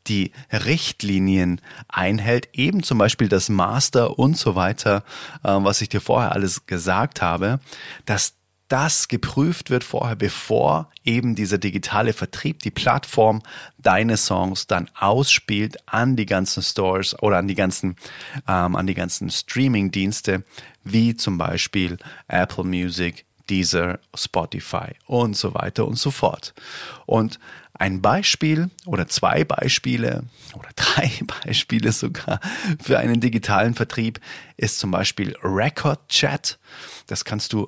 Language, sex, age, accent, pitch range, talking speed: German, male, 30-49, German, 95-120 Hz, 130 wpm